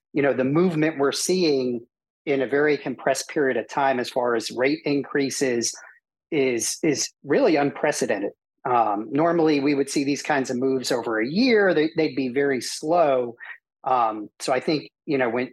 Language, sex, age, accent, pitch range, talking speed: English, male, 40-59, American, 125-145 Hz, 180 wpm